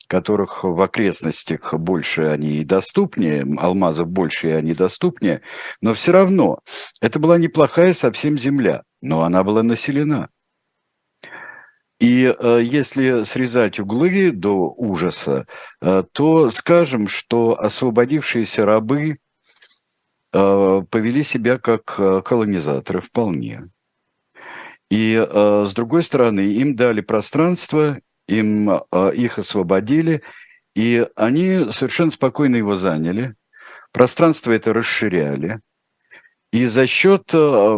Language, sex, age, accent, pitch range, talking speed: Russian, male, 60-79, native, 100-145 Hz, 100 wpm